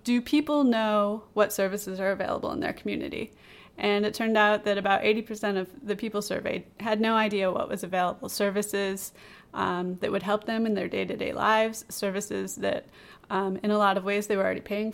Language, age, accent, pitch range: English, 30-49, American, 195-220 Hz